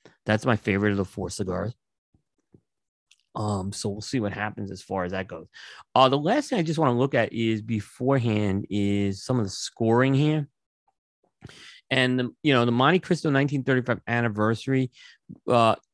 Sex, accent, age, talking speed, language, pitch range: male, American, 30-49, 170 wpm, English, 100-125 Hz